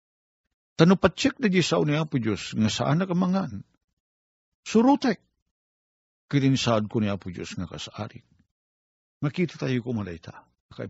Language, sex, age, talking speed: Filipino, male, 50-69, 115 wpm